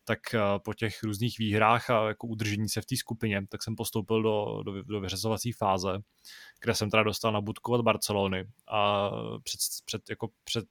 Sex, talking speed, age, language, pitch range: male, 180 wpm, 20-39, Czech, 100-115 Hz